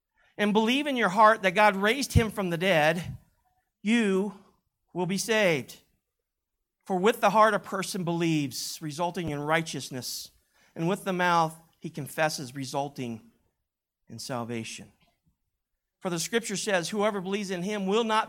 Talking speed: 150 wpm